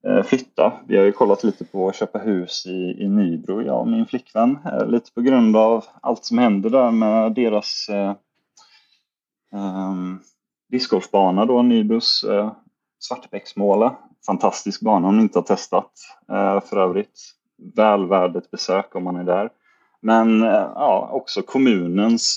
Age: 30-49